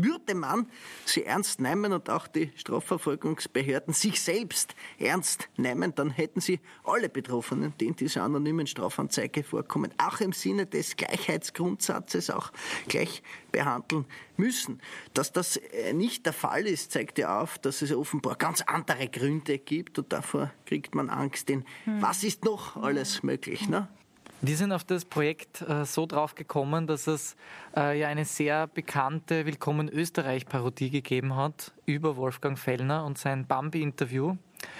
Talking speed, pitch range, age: 150 wpm, 140-165 Hz, 20-39